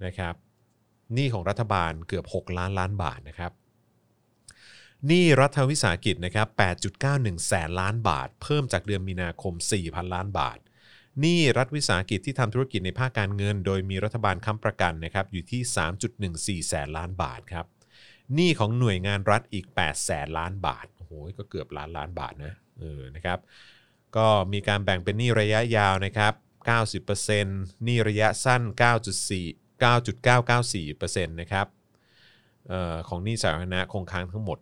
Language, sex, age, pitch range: Thai, male, 30-49, 90-115 Hz